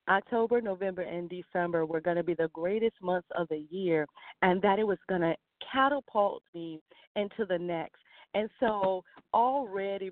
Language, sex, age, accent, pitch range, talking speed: English, female, 40-59, American, 170-205 Hz, 165 wpm